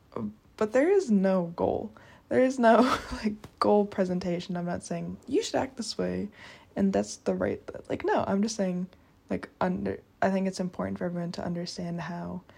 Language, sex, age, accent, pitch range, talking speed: English, female, 20-39, American, 170-205 Hz, 190 wpm